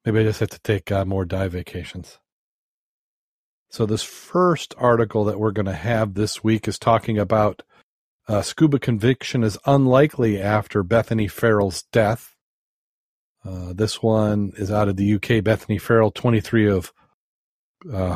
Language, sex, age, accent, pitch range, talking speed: English, male, 40-59, American, 100-120 Hz, 150 wpm